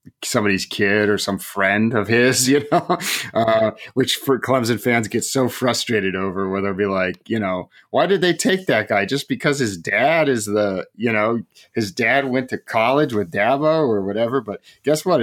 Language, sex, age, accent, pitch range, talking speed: English, male, 30-49, American, 90-120 Hz, 195 wpm